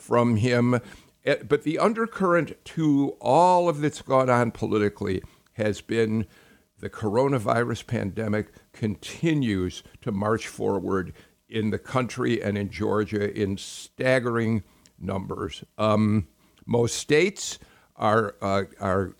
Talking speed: 110 wpm